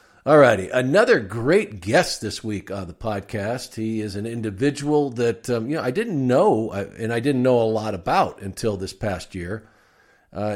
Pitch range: 105-130 Hz